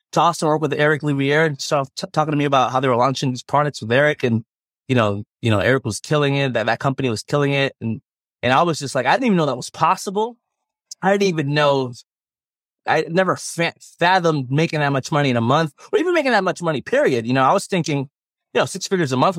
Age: 20-39